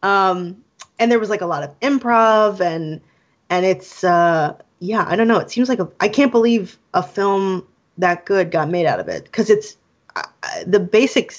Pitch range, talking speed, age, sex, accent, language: 165-200 Hz, 200 wpm, 20-39, female, American, English